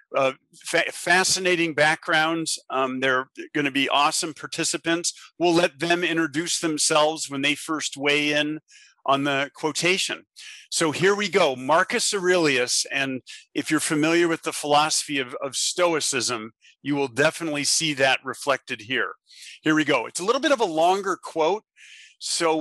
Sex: male